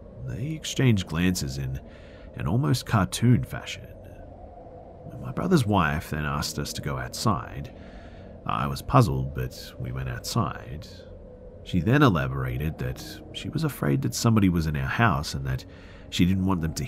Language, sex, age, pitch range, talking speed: English, male, 40-59, 70-100 Hz, 155 wpm